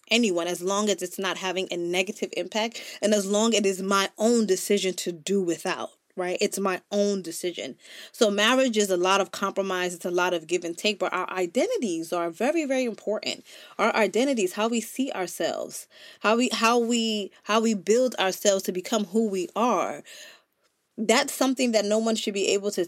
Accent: American